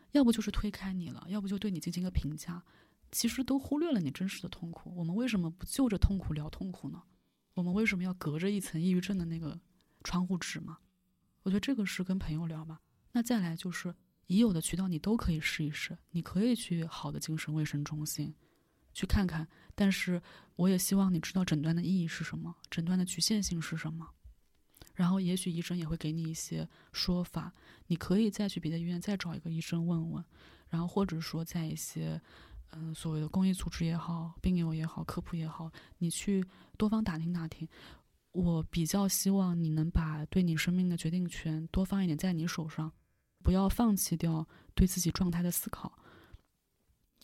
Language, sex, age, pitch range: Chinese, female, 20-39, 165-190 Hz